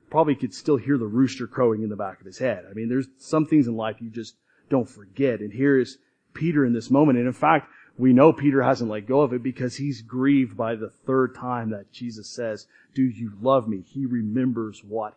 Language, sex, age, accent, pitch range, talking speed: English, male, 40-59, American, 115-140 Hz, 235 wpm